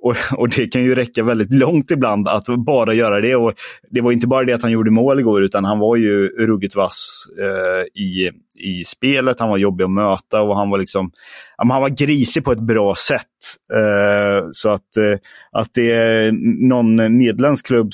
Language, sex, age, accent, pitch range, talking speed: Swedish, male, 30-49, native, 105-125 Hz, 195 wpm